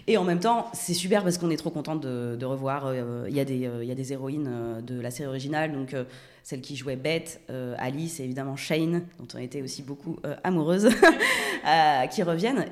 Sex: female